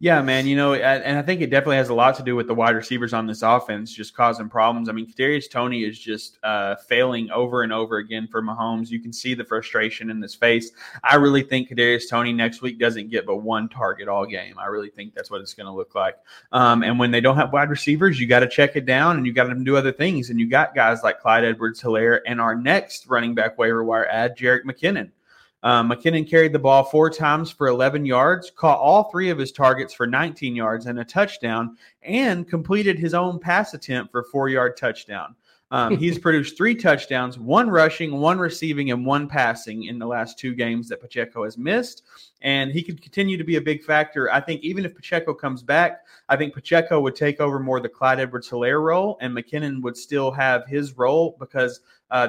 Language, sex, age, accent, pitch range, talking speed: English, male, 30-49, American, 120-155 Hz, 230 wpm